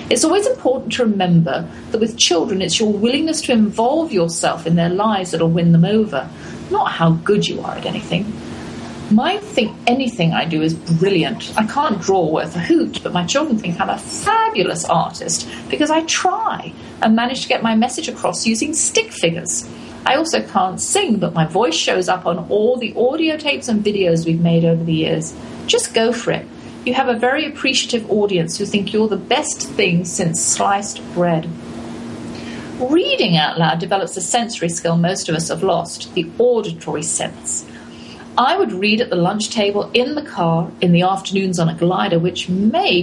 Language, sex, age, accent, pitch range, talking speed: English, female, 40-59, British, 170-240 Hz, 190 wpm